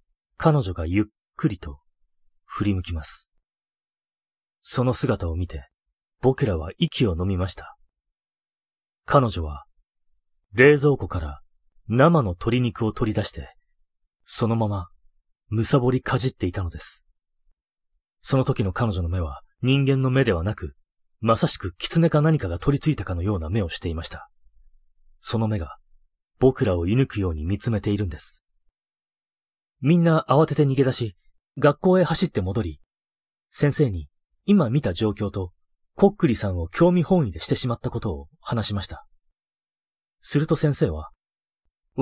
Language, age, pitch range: Japanese, 30-49, 85-140 Hz